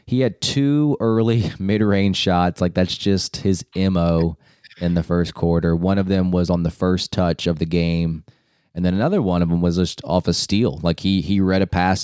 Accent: American